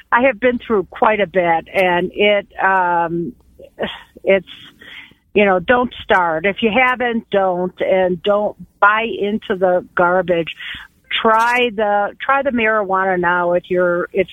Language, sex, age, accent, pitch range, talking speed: English, female, 50-69, American, 185-240 Hz, 140 wpm